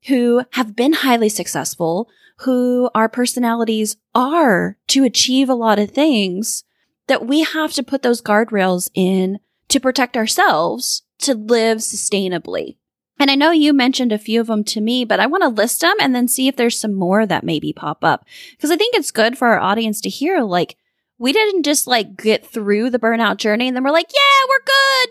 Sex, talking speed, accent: female, 200 wpm, American